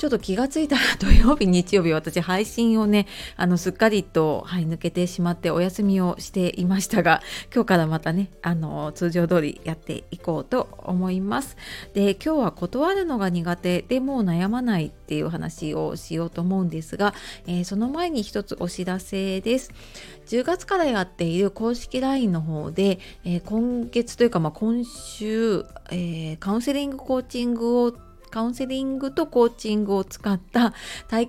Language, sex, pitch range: Japanese, female, 175-240 Hz